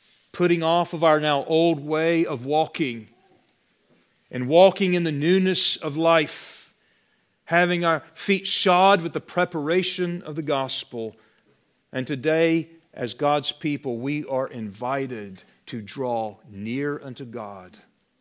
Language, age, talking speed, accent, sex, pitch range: English, 40-59, 130 wpm, American, male, 145-200 Hz